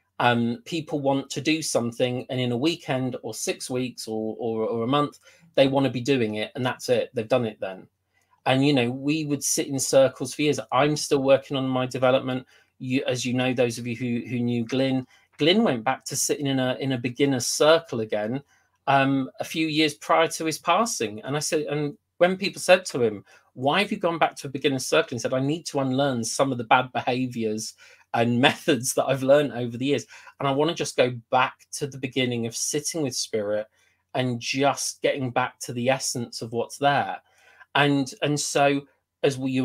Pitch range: 125-145 Hz